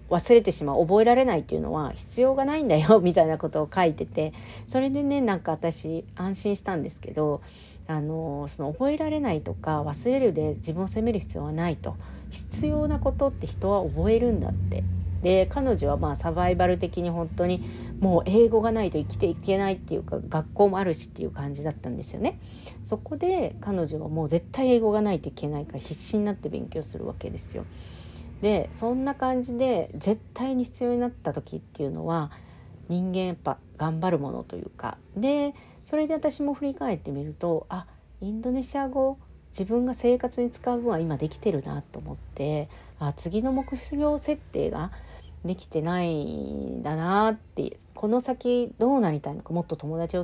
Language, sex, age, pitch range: Japanese, female, 40-59, 145-235 Hz